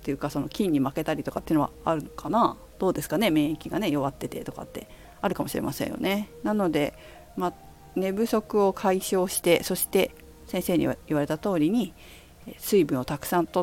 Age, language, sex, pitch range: 50-69, Japanese, female, 145-235 Hz